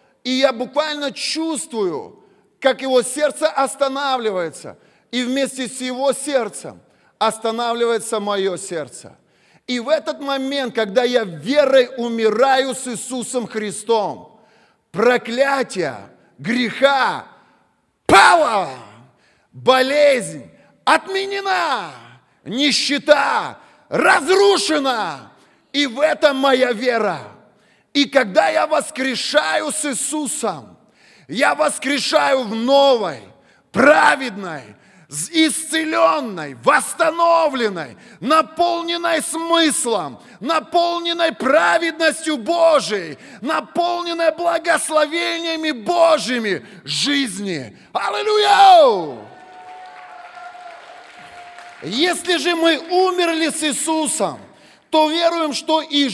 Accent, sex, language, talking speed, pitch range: native, male, Russian, 75 wpm, 235-320 Hz